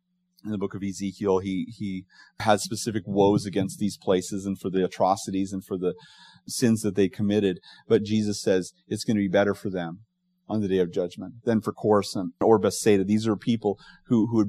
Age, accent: 40-59, American